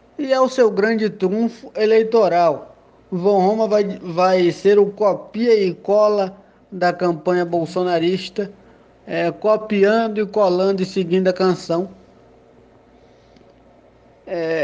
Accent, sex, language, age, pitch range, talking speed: Brazilian, male, Portuguese, 20-39, 175-220 Hz, 115 wpm